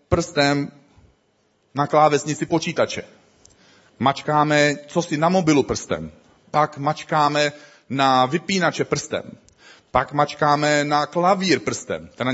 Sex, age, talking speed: male, 40-59, 100 wpm